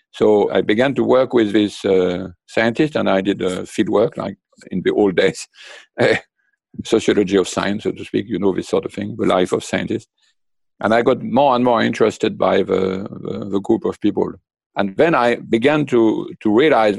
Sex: male